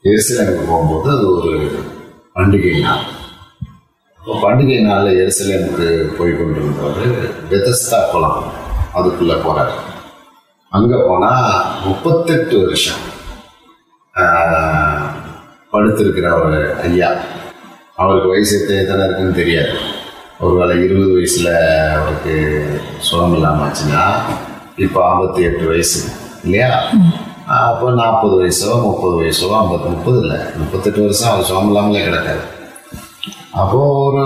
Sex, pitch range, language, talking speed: male, 85-125 Hz, Tamil, 65 wpm